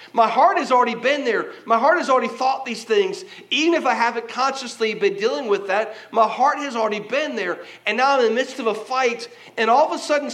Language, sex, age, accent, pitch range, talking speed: English, male, 40-59, American, 210-275 Hz, 245 wpm